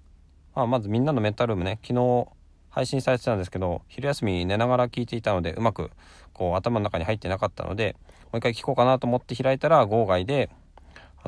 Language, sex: Japanese, male